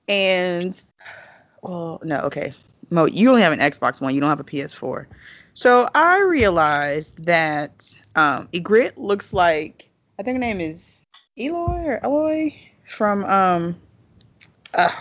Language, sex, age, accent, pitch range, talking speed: English, female, 20-39, American, 165-215 Hz, 140 wpm